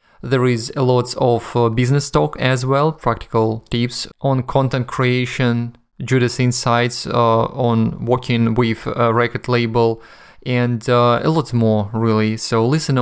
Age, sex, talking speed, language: 20-39, male, 145 wpm, English